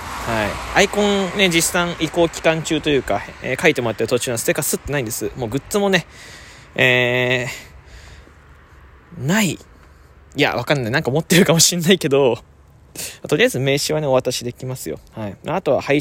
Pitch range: 105-155 Hz